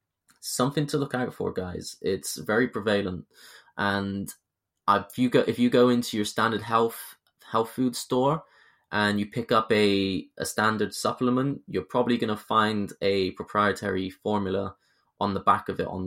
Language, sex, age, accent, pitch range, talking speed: English, male, 20-39, British, 100-125 Hz, 170 wpm